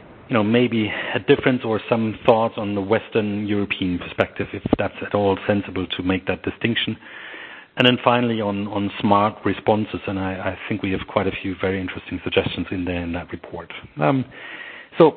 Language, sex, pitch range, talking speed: English, male, 100-120 Hz, 190 wpm